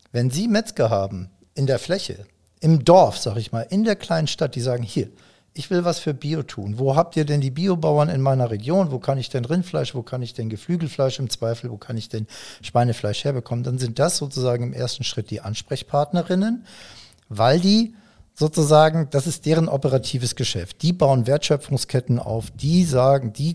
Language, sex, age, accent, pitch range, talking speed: German, male, 50-69, German, 115-150 Hz, 195 wpm